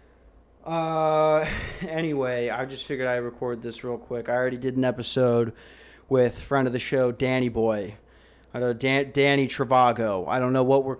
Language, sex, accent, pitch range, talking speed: English, male, American, 115-135 Hz, 180 wpm